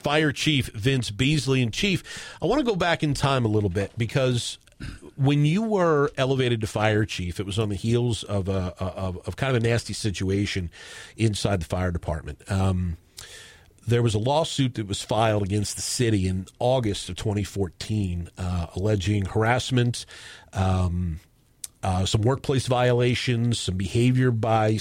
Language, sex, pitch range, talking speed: English, male, 100-125 Hz, 165 wpm